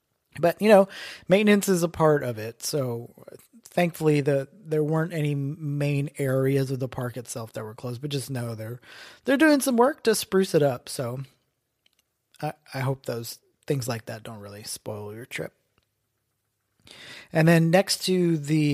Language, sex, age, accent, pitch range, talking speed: English, male, 30-49, American, 120-160 Hz, 175 wpm